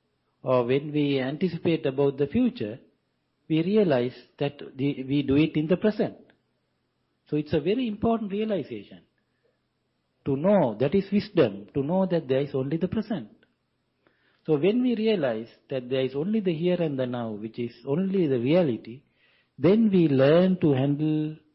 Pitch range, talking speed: 135-185 Hz, 165 wpm